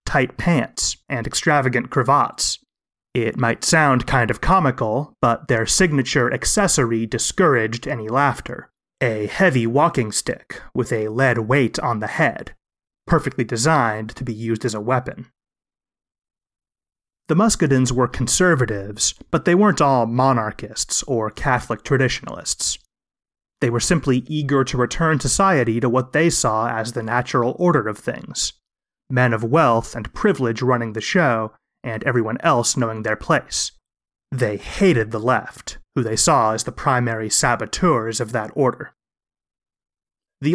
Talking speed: 140 wpm